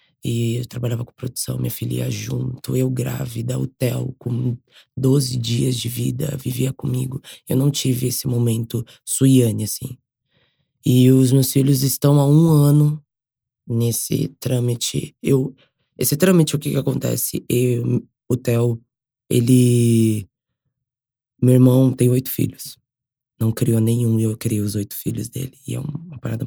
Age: 20-39